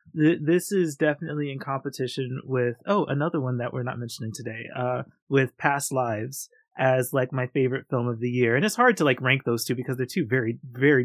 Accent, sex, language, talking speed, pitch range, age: American, male, English, 210 wpm, 125-155 Hz, 30-49